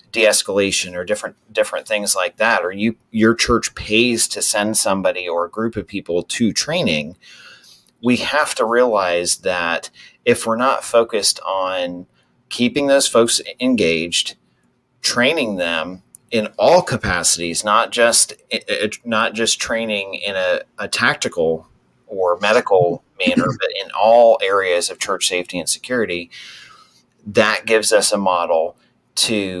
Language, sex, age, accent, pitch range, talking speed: English, male, 30-49, American, 95-120 Hz, 140 wpm